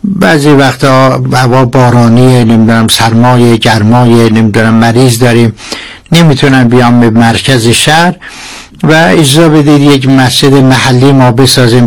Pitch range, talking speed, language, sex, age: 125-160 Hz, 115 wpm, Persian, male, 60-79